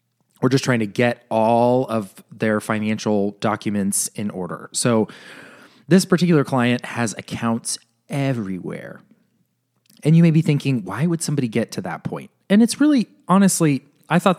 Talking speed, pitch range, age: 155 wpm, 110-150 Hz, 20-39